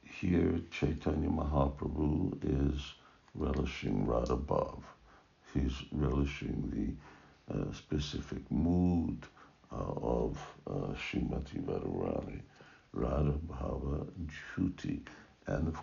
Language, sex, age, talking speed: English, male, 60-79, 80 wpm